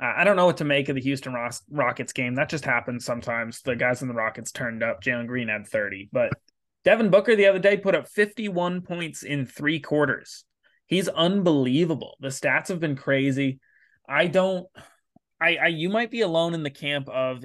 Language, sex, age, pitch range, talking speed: English, male, 20-39, 115-155 Hz, 205 wpm